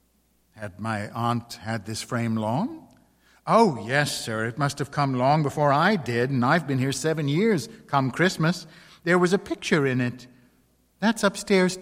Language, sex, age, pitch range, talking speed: English, male, 60-79, 115-145 Hz, 175 wpm